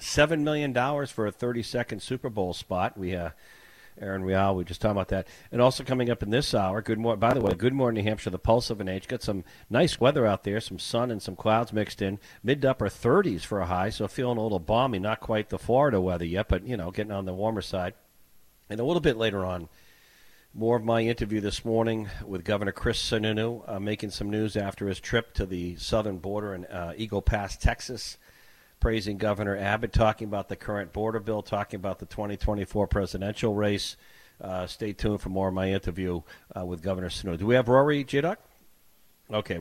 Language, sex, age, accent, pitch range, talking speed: English, male, 50-69, American, 95-115 Hz, 215 wpm